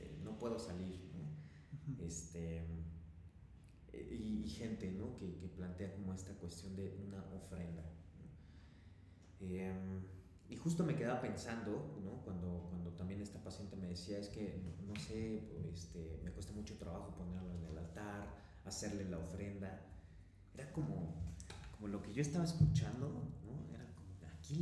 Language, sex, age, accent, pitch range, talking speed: Spanish, male, 30-49, Mexican, 85-105 Hz, 155 wpm